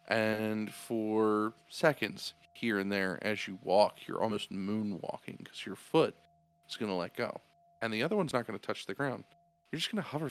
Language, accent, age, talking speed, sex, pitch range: English, American, 40-59, 205 wpm, male, 110-175 Hz